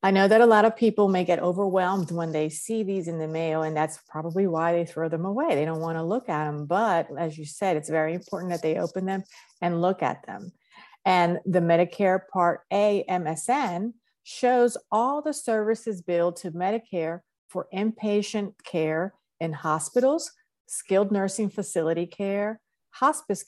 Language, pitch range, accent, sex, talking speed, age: English, 170-225 Hz, American, female, 175 wpm, 50-69